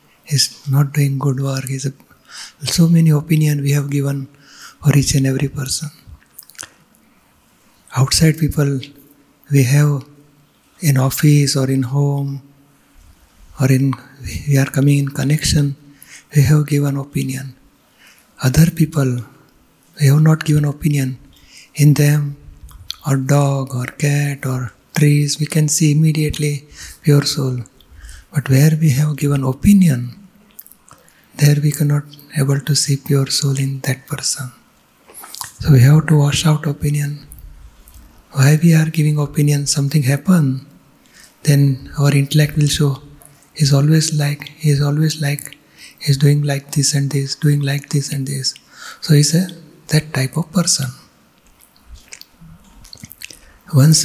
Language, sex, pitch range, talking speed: Gujarati, male, 135-150 Hz, 135 wpm